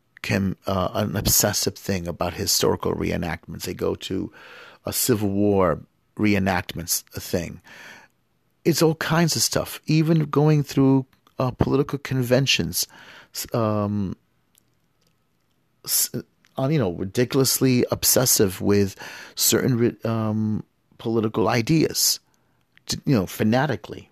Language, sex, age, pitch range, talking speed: English, male, 40-59, 95-125 Hz, 95 wpm